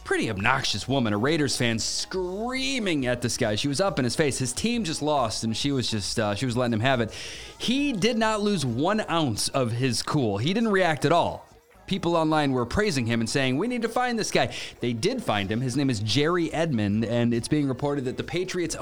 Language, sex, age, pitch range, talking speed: English, male, 30-49, 115-160 Hz, 235 wpm